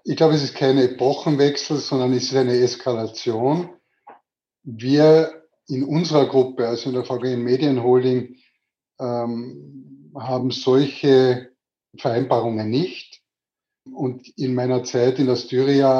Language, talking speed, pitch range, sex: German, 115 wpm, 125-140 Hz, male